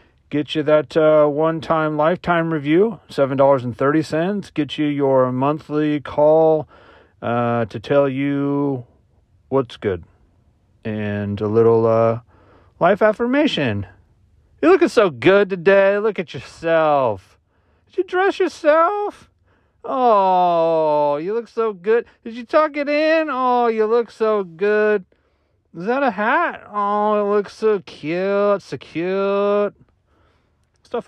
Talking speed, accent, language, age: 125 wpm, American, English, 40-59